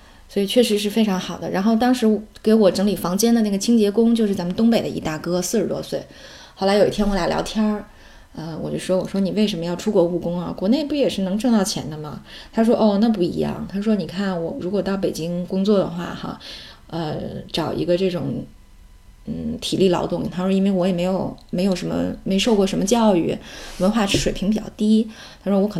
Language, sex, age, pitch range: Chinese, female, 20-39, 185-220 Hz